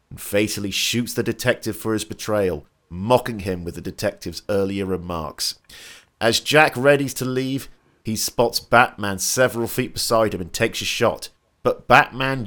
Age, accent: 40-59, British